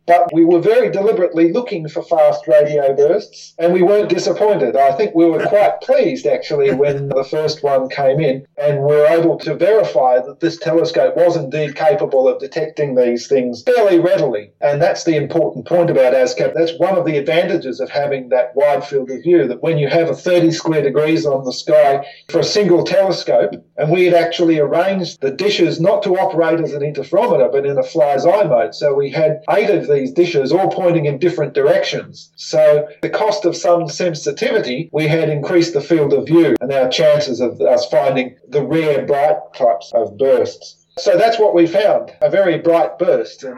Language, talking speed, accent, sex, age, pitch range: English, 200 wpm, Australian, male, 50-69, 145-185 Hz